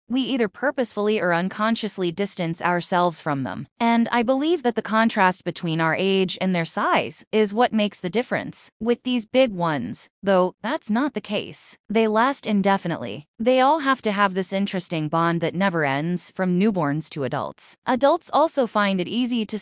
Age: 20-39